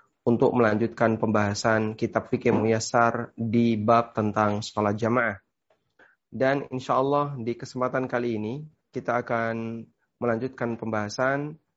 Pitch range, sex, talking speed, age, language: 115-135 Hz, male, 110 wpm, 30-49, Indonesian